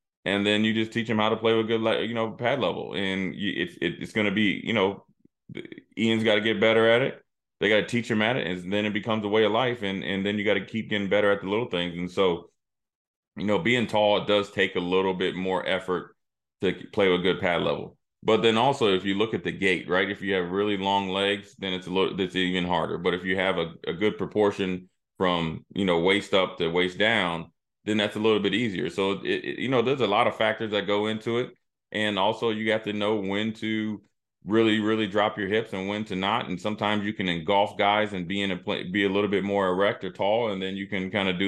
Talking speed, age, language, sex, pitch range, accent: 255 wpm, 20-39, English, male, 90-105 Hz, American